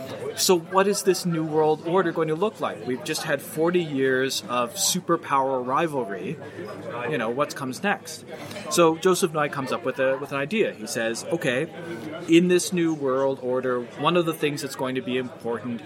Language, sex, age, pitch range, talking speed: English, male, 30-49, 130-160 Hz, 195 wpm